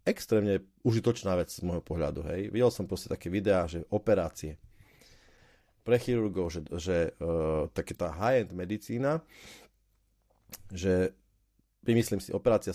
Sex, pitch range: male, 90-115 Hz